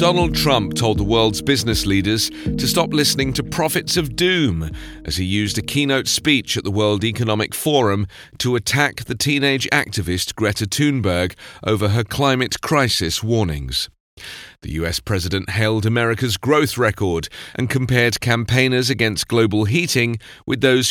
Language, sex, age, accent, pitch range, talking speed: English, male, 40-59, British, 105-135 Hz, 150 wpm